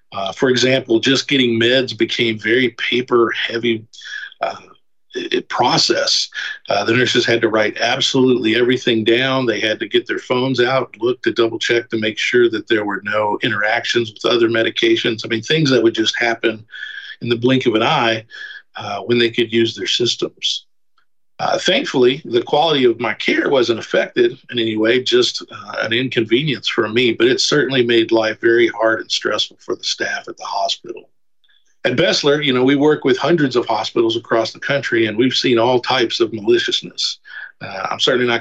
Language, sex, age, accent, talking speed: English, male, 50-69, American, 185 wpm